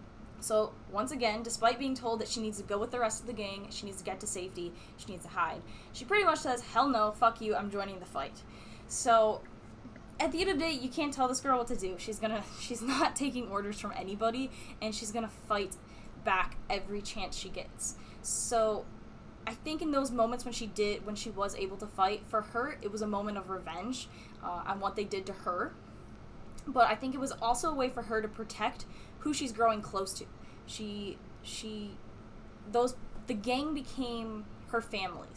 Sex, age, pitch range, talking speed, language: female, 10-29, 195-240 Hz, 215 wpm, English